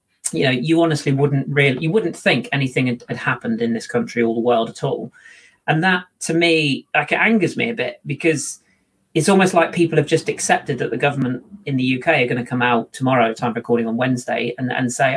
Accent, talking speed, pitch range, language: British, 225 wpm, 130-185 Hz, English